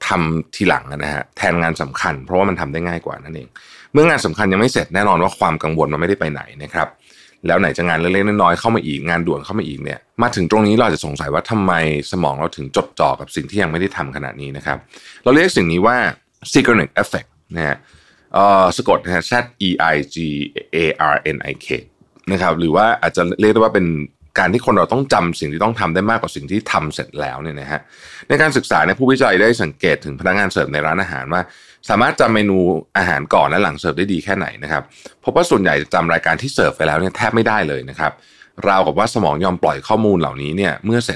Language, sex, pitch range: Thai, male, 75-100 Hz